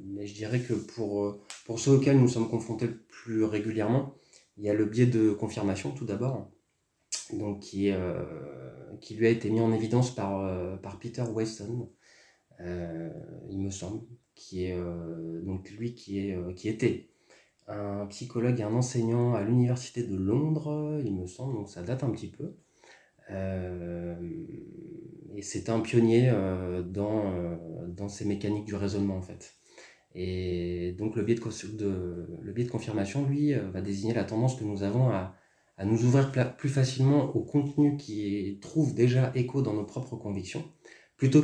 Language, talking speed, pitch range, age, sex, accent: French, 175 wpm, 100-125 Hz, 20-39, male, French